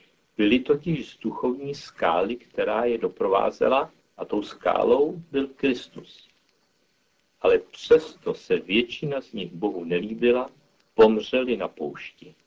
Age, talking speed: 50-69, 115 wpm